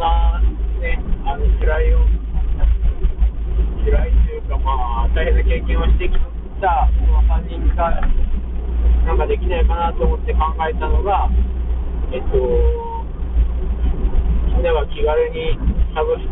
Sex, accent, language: male, native, Japanese